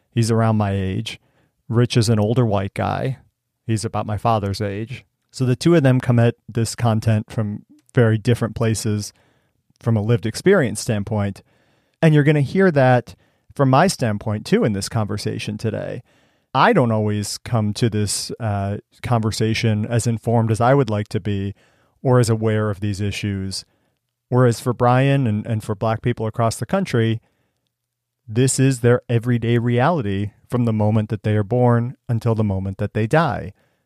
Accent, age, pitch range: American, 40-59, 105-125 Hz